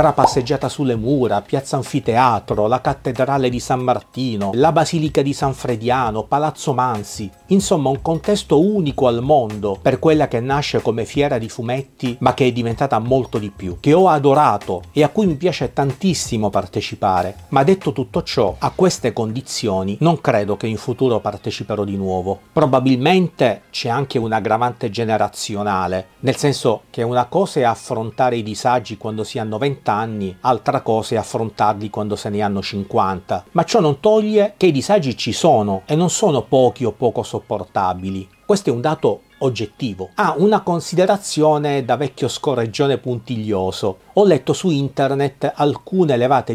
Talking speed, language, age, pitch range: 160 wpm, Italian, 40-59, 110-150 Hz